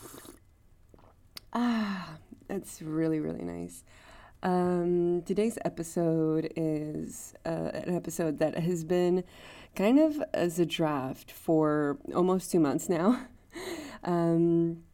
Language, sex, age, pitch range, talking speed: English, female, 20-39, 150-175 Hz, 105 wpm